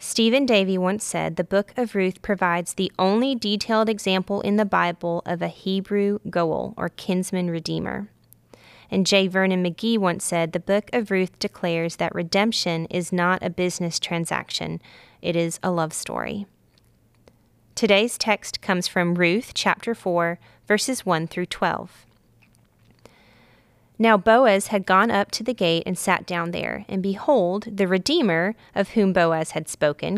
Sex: female